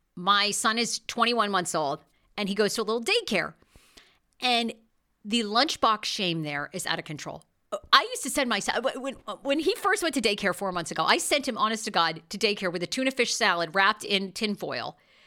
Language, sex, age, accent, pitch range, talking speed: English, female, 40-59, American, 185-275 Hz, 220 wpm